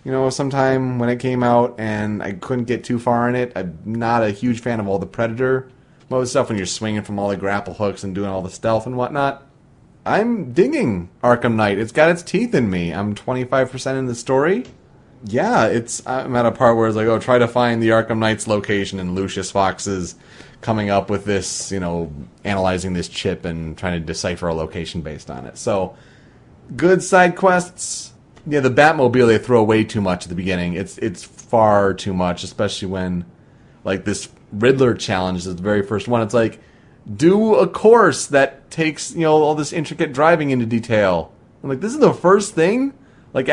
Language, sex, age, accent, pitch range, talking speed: English, male, 30-49, American, 100-140 Hz, 205 wpm